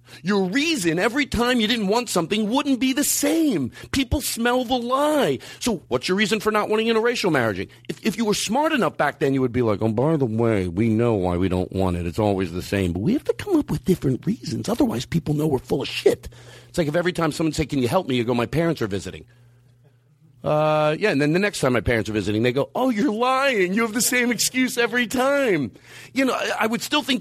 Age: 40-59